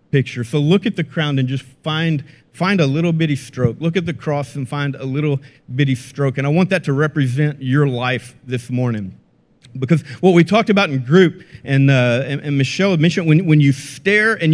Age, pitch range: 40-59, 130-165 Hz